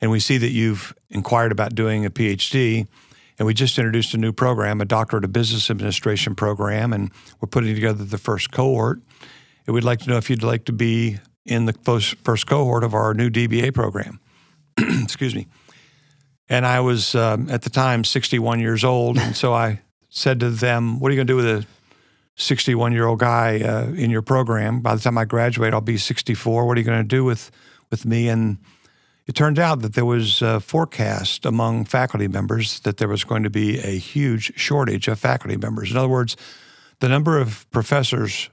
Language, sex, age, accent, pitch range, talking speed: English, male, 50-69, American, 110-125 Hz, 200 wpm